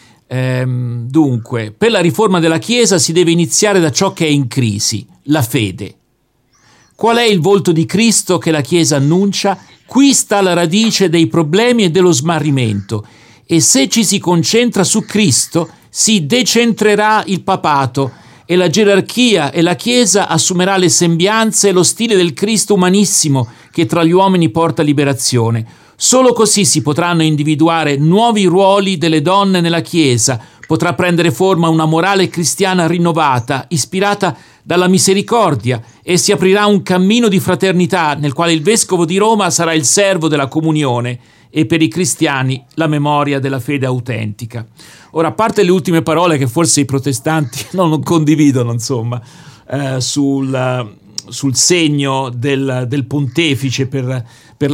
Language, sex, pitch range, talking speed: Italian, male, 135-190 Hz, 150 wpm